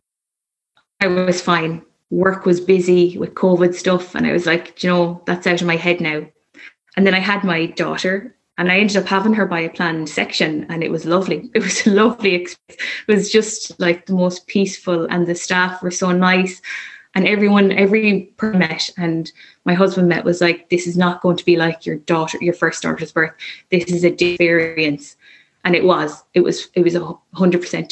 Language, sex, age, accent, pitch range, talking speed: English, female, 20-39, Irish, 165-185 Hz, 205 wpm